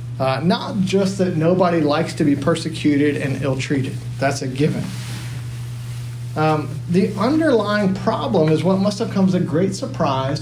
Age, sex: 40-59, male